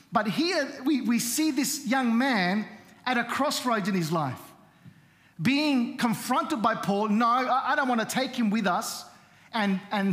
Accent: Australian